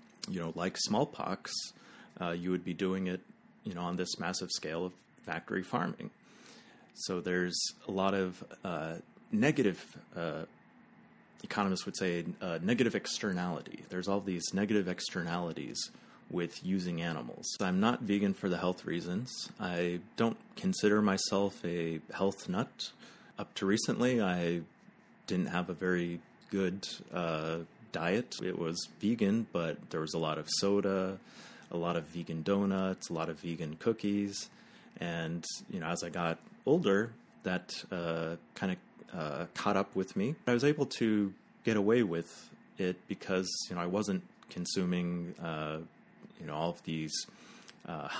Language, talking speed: English, 150 wpm